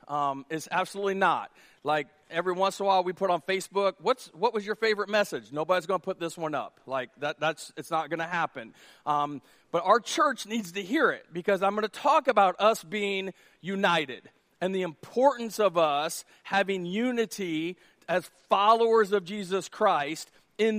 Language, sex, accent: English, male, American